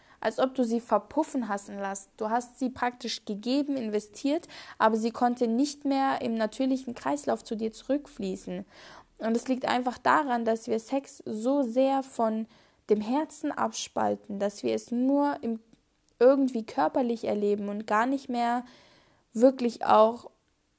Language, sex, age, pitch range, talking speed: German, female, 10-29, 210-260 Hz, 150 wpm